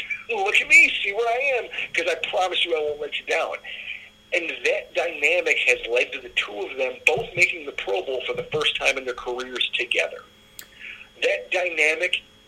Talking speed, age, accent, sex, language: 195 wpm, 40-59, American, male, English